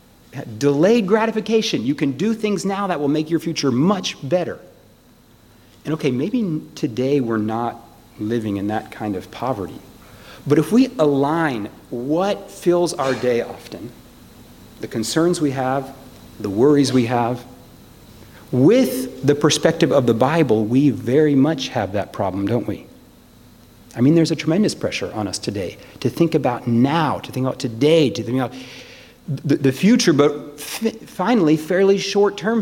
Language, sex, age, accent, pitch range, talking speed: English, male, 50-69, American, 120-165 Hz, 155 wpm